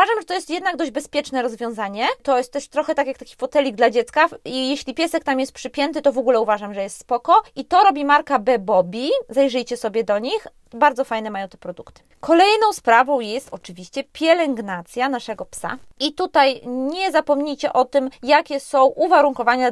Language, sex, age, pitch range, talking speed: Polish, female, 20-39, 235-300 Hz, 185 wpm